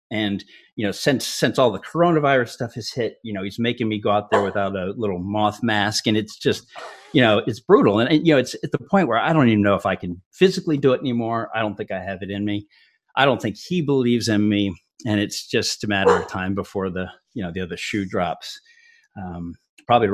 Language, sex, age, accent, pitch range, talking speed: English, male, 40-59, American, 105-135 Hz, 245 wpm